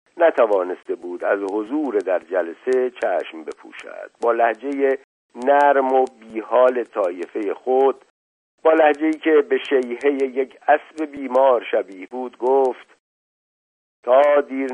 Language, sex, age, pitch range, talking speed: Persian, male, 50-69, 120-150 Hz, 115 wpm